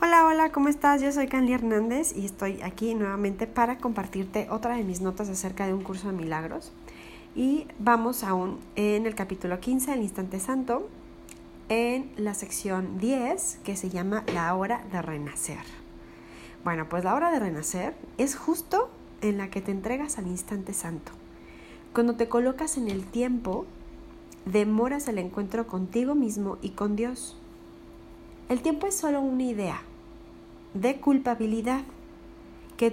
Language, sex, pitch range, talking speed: English, female, 175-245 Hz, 155 wpm